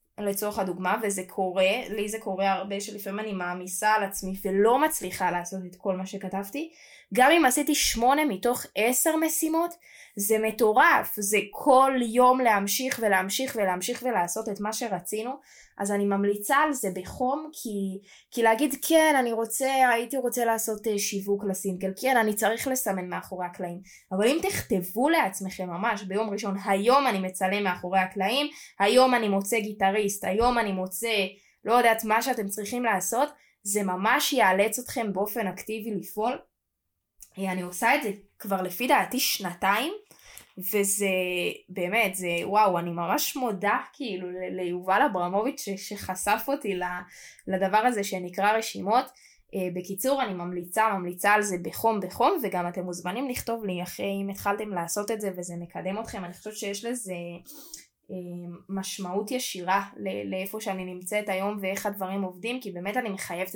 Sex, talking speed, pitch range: female, 150 wpm, 190-240 Hz